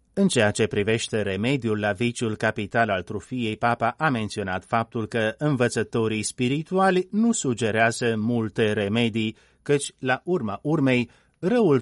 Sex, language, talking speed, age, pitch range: male, Romanian, 130 wpm, 30-49, 110-130 Hz